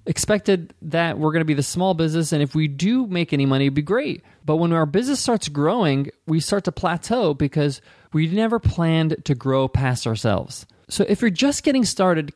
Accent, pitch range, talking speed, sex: American, 135-180 Hz, 210 wpm, male